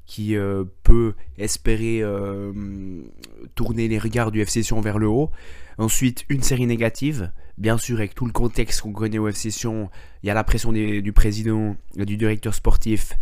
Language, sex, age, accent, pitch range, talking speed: French, male, 20-39, French, 100-115 Hz, 180 wpm